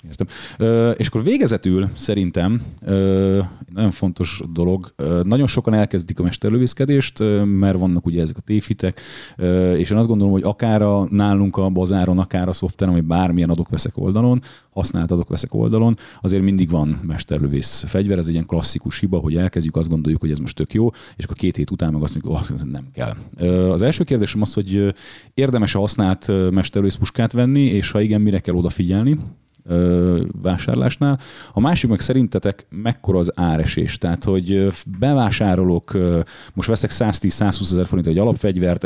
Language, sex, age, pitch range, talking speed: Hungarian, male, 30-49, 90-110 Hz, 165 wpm